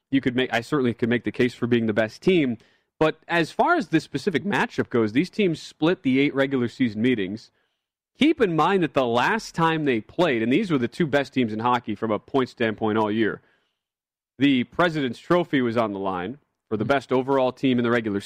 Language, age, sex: English, 30-49, male